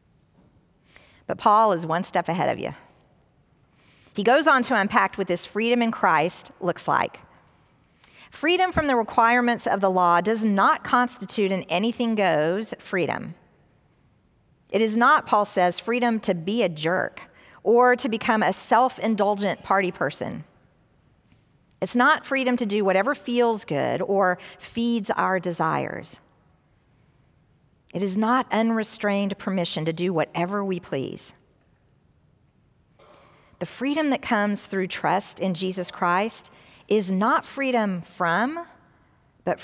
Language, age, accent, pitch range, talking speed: English, 50-69, American, 180-235 Hz, 130 wpm